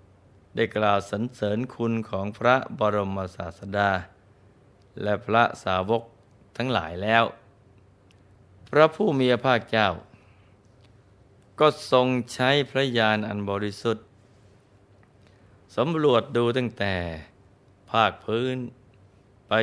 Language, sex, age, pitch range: Thai, male, 20-39, 100-115 Hz